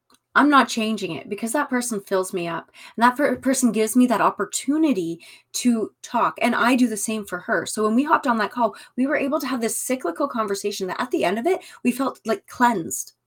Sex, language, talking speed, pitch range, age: female, English, 230 wpm, 200-270 Hz, 20-39